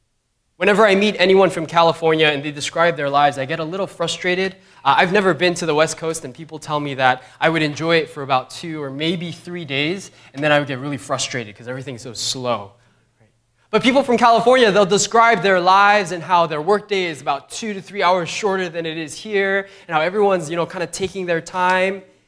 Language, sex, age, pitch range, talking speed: English, male, 20-39, 125-190 Hz, 230 wpm